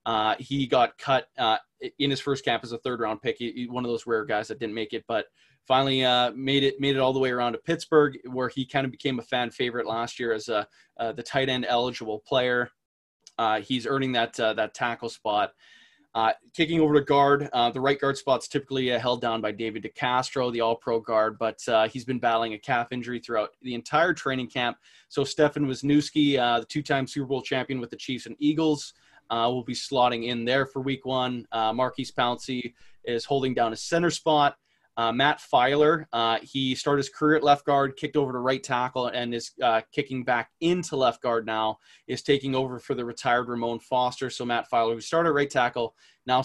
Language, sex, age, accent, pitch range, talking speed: English, male, 20-39, American, 115-140 Hz, 220 wpm